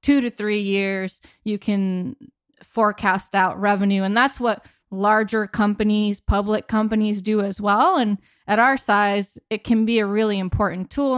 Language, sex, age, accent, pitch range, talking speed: English, female, 20-39, American, 200-225 Hz, 160 wpm